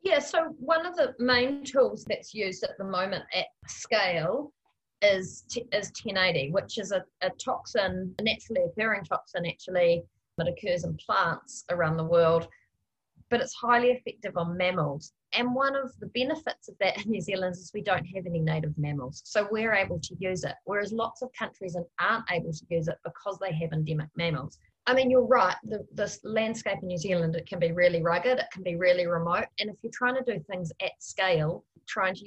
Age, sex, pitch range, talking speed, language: 30-49, female, 175-225 Hz, 200 wpm, English